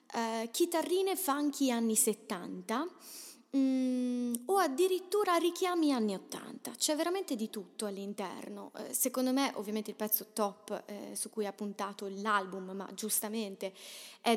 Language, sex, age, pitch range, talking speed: Italian, female, 20-39, 210-260 Hz, 140 wpm